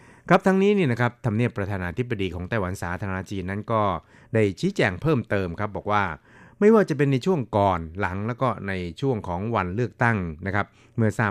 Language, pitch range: Thai, 95-115 Hz